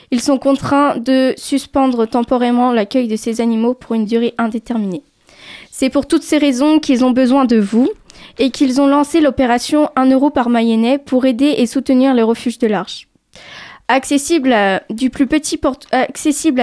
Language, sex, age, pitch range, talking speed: French, female, 10-29, 240-280 Hz, 150 wpm